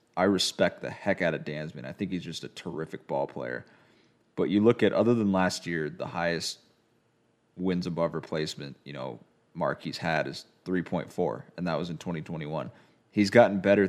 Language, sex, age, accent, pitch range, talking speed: English, male, 30-49, American, 90-110 Hz, 185 wpm